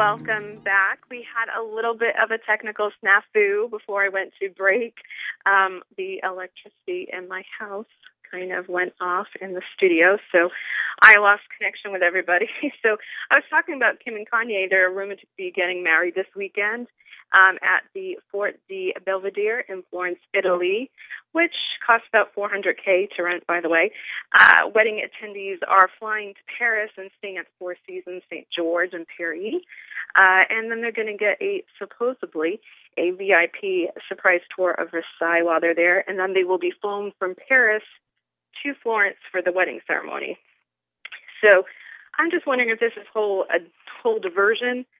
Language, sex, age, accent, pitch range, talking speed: English, female, 30-49, American, 185-230 Hz, 170 wpm